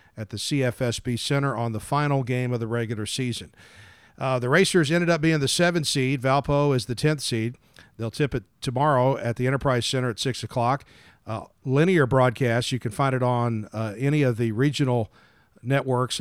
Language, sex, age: English, male, 50-69